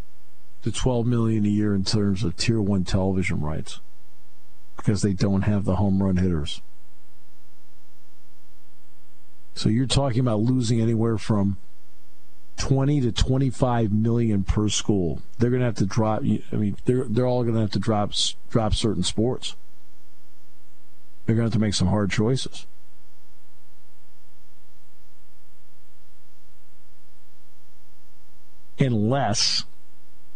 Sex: male